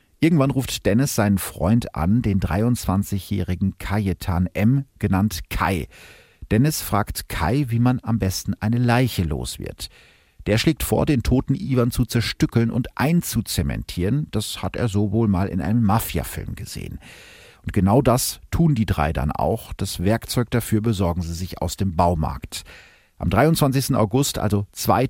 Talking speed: 155 wpm